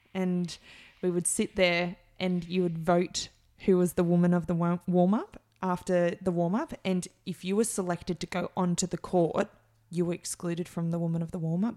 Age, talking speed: 20-39, 195 wpm